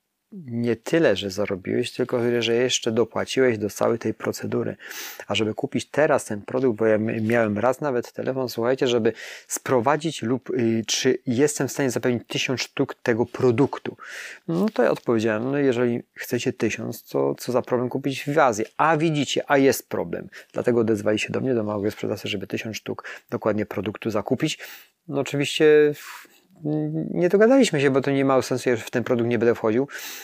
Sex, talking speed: male, 175 wpm